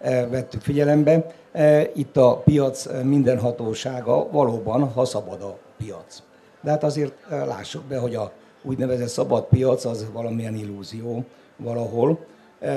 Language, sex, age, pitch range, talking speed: Hungarian, male, 60-79, 125-160 Hz, 120 wpm